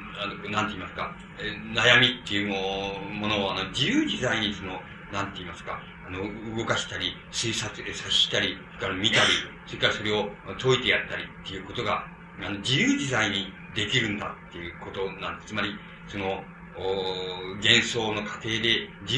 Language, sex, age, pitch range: Japanese, male, 40-59, 105-140 Hz